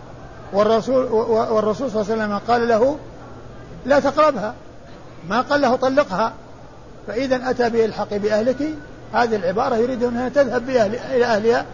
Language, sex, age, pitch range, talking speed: Arabic, male, 50-69, 195-240 Hz, 130 wpm